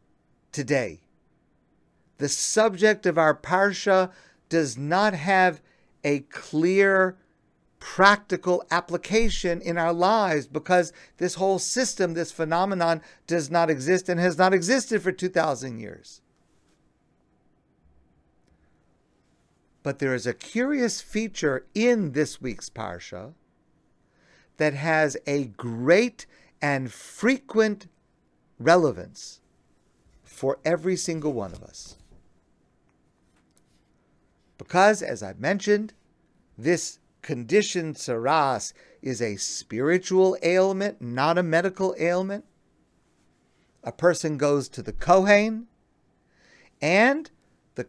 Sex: male